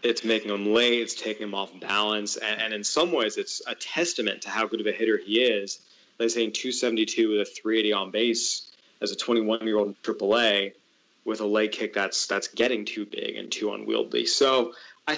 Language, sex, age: English, male, 20-39